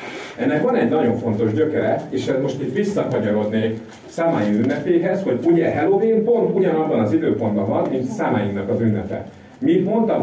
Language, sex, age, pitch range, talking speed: Hungarian, male, 40-59, 115-170 Hz, 145 wpm